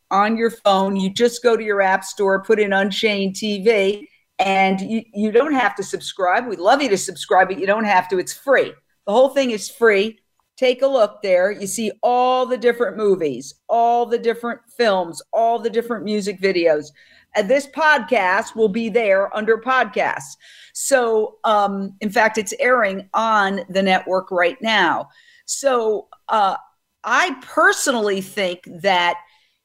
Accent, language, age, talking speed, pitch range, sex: American, English, 50-69, 165 wpm, 195-250 Hz, female